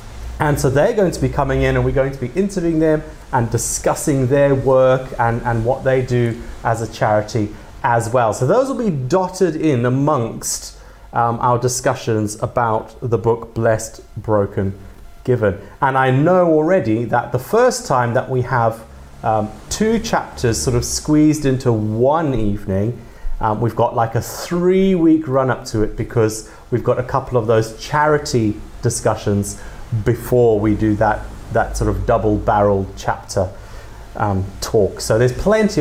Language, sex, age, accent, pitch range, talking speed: English, male, 30-49, British, 105-140 Hz, 165 wpm